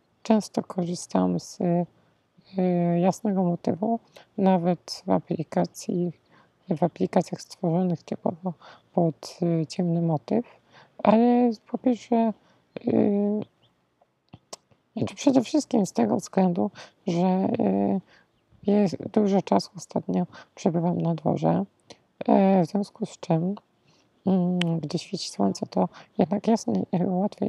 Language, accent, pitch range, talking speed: Polish, native, 170-210 Hz, 110 wpm